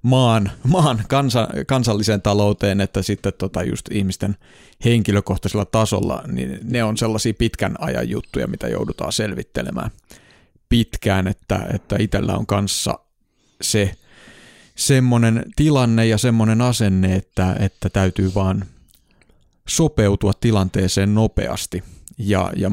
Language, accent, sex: Finnish, native, male